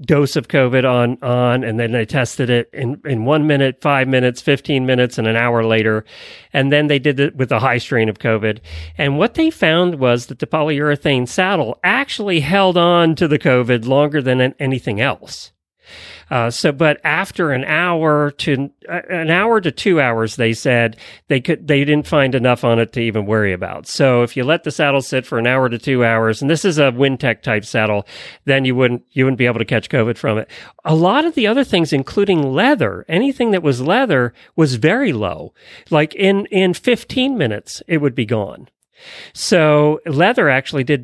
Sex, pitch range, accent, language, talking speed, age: male, 120-160 Hz, American, English, 205 wpm, 40-59